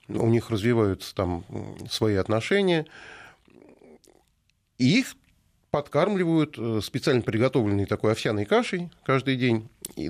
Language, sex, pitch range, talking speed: Russian, male, 100-130 Hz, 100 wpm